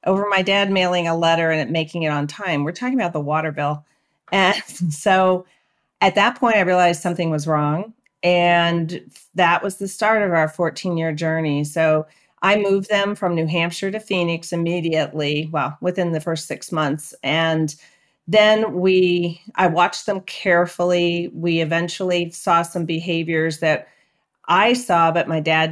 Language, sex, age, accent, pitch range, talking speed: English, female, 40-59, American, 155-180 Hz, 165 wpm